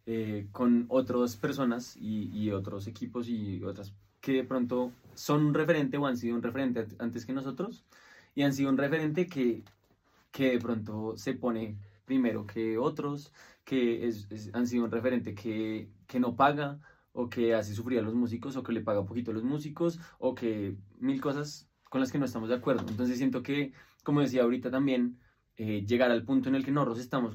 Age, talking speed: 20-39, 200 wpm